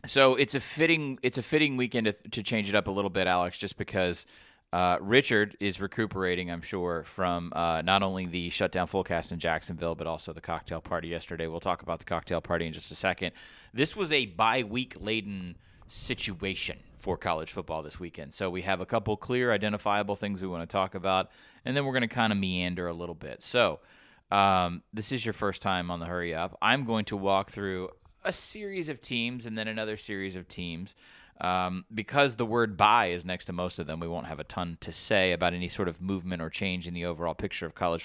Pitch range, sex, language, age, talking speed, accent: 85-110 Hz, male, English, 30-49, 220 wpm, American